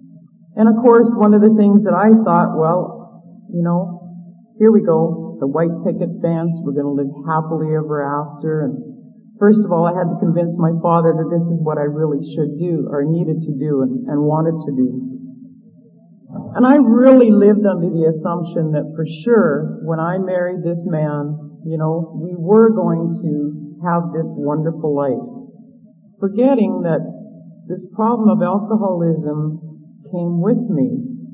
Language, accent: English, American